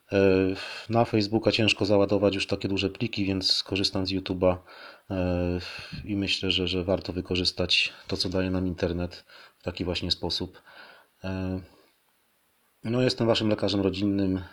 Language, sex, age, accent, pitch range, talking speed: Polish, male, 30-49, native, 90-100 Hz, 130 wpm